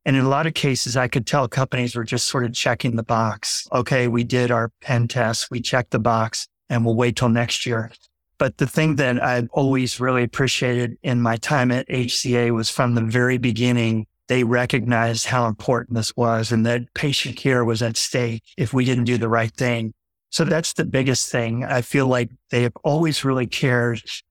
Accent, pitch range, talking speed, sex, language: American, 120-135 Hz, 205 wpm, male, English